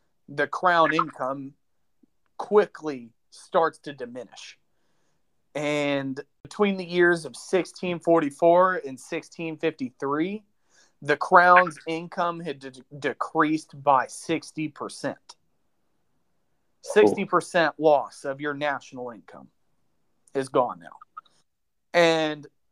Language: English